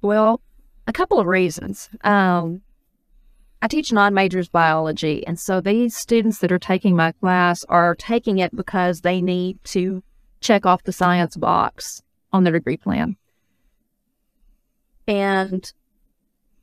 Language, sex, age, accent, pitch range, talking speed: English, female, 40-59, American, 180-215 Hz, 130 wpm